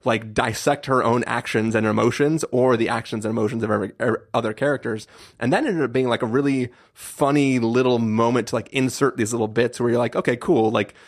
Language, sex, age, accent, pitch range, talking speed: English, male, 30-49, American, 115-135 Hz, 215 wpm